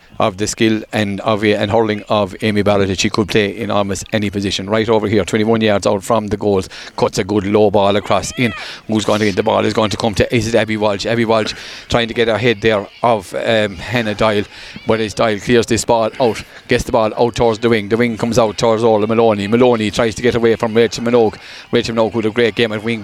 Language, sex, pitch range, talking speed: English, male, 110-120 Hz, 260 wpm